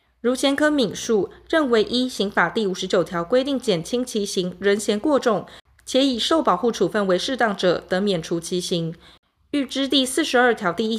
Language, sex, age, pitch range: Chinese, female, 20-39, 190-250 Hz